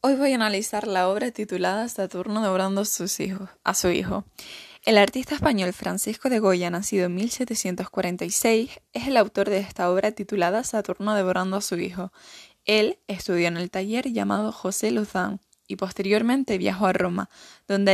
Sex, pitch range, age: female, 190-225 Hz, 10-29